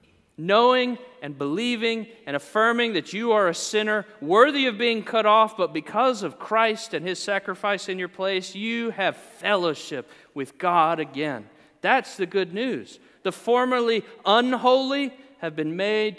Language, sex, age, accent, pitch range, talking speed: English, male, 40-59, American, 180-240 Hz, 150 wpm